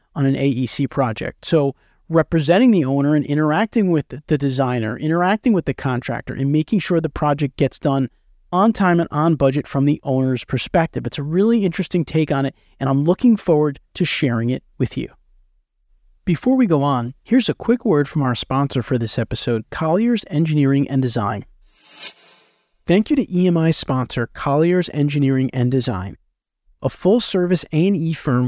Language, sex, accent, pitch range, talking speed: English, male, American, 130-175 Hz, 170 wpm